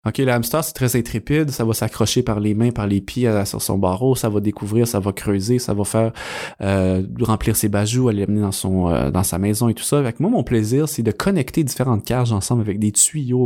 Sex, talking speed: male, 245 wpm